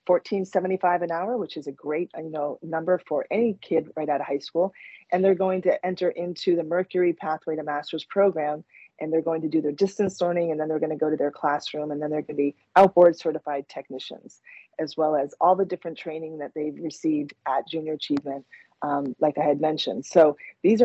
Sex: female